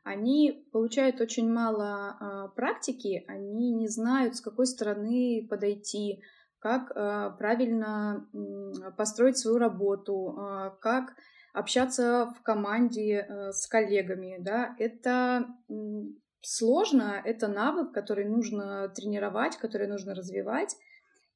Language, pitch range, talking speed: Russian, 205-245 Hz, 95 wpm